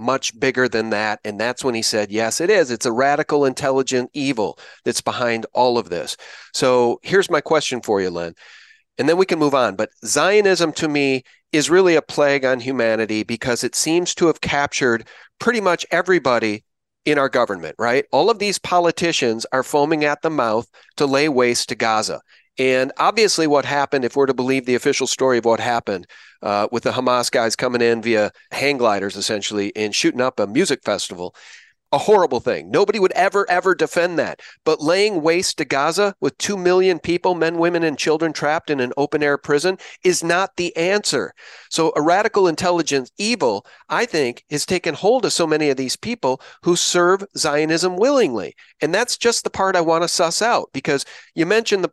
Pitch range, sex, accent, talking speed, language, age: 125-180 Hz, male, American, 195 wpm, English, 40-59